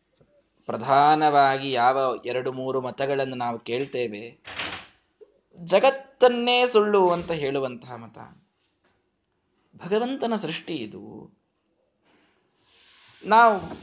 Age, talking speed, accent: 20-39, 70 wpm, native